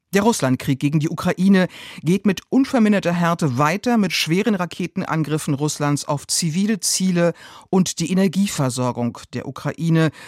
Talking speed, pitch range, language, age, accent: 130 wpm, 140-190 Hz, German, 50-69, German